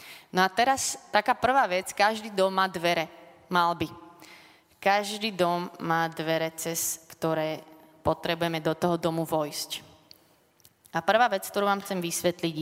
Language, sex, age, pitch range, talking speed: Slovak, female, 20-39, 165-195 Hz, 145 wpm